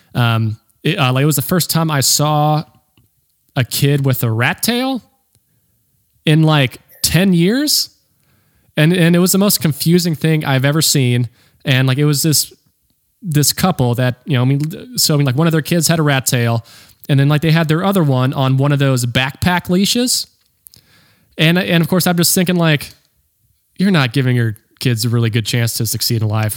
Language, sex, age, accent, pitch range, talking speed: English, male, 20-39, American, 120-155 Hz, 205 wpm